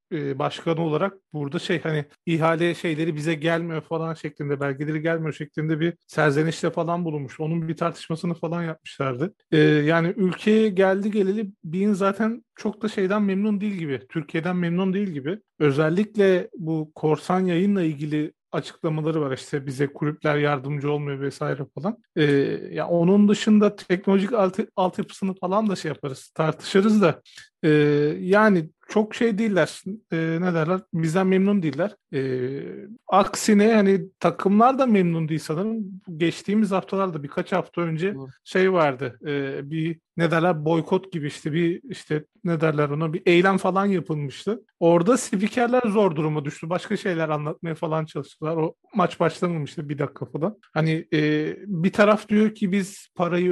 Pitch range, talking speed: 155-195 Hz, 150 wpm